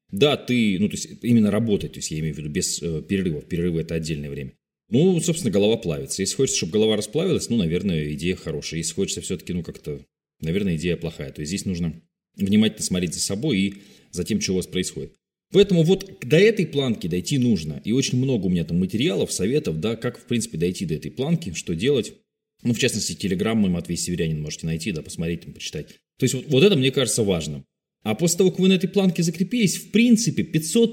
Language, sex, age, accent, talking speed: Russian, male, 20-39, native, 215 wpm